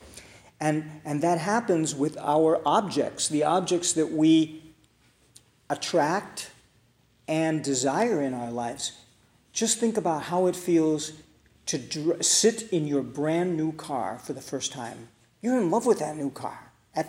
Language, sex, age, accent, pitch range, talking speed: English, male, 50-69, American, 150-205 Hz, 150 wpm